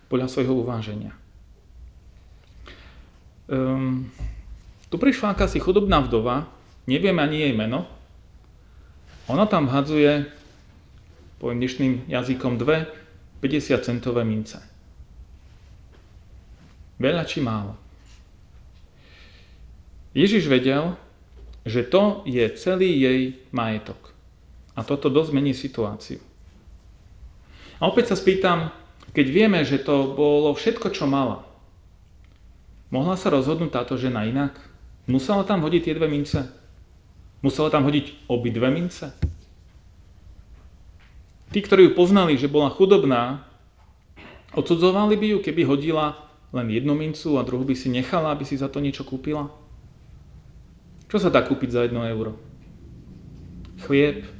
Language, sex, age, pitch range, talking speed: Slovak, male, 40-59, 90-150 Hz, 115 wpm